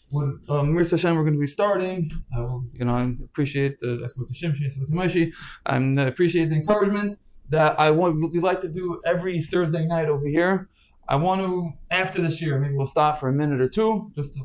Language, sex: English, male